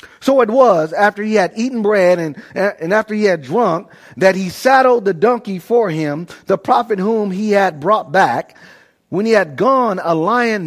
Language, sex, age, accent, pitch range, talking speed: English, male, 40-59, American, 170-225 Hz, 190 wpm